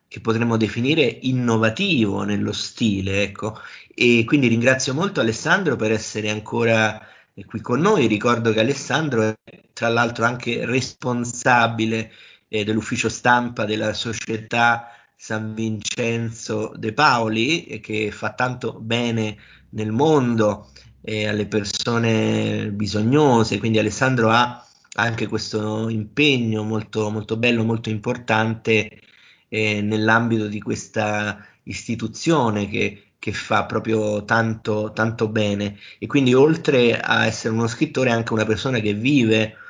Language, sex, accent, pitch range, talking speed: Italian, male, native, 110-120 Hz, 125 wpm